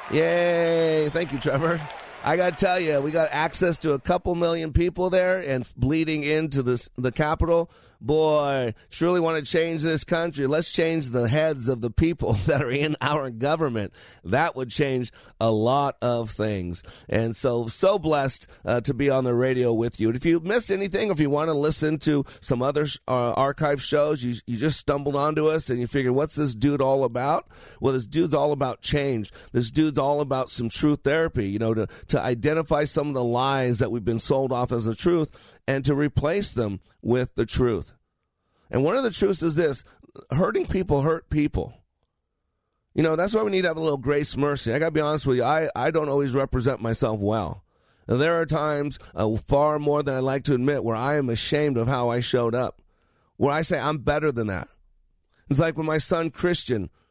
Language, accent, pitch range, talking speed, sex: English, American, 120-155 Hz, 210 wpm, male